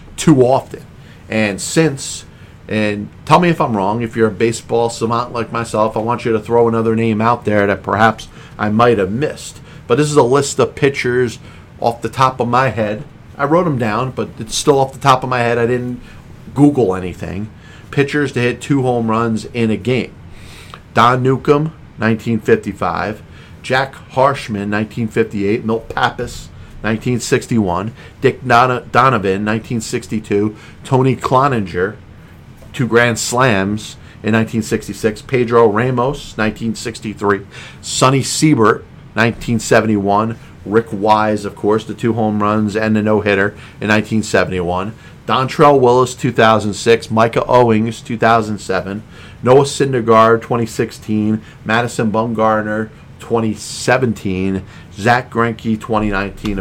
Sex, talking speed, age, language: male, 130 wpm, 40-59, English